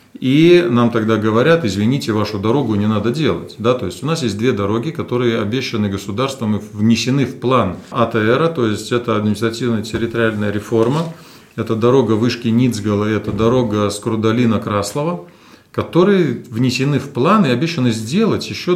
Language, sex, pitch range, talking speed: Russian, male, 115-160 Hz, 150 wpm